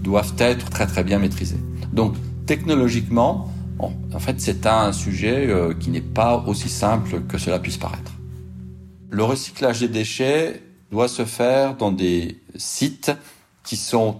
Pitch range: 90-120 Hz